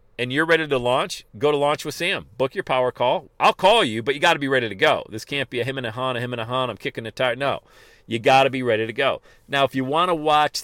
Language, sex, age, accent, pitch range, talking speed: English, male, 40-59, American, 110-150 Hz, 320 wpm